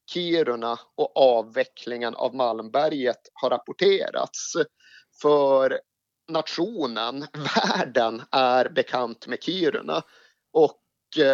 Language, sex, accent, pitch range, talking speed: Swedish, male, native, 120-155 Hz, 85 wpm